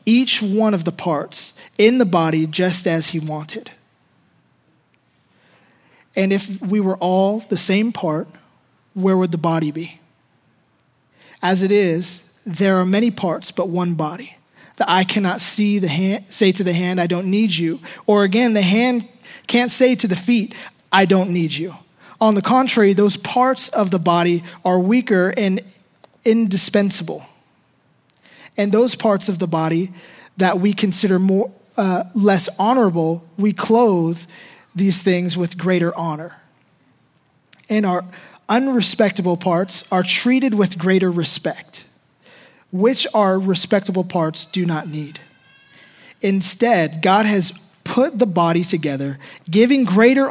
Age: 20-39